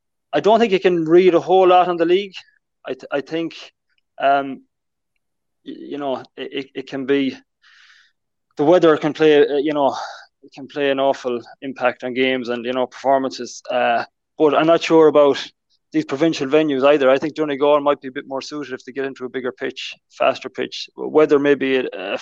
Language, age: English, 20-39